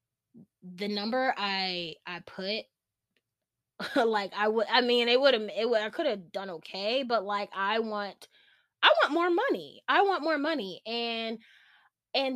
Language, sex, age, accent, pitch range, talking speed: English, female, 20-39, American, 185-235 Hz, 165 wpm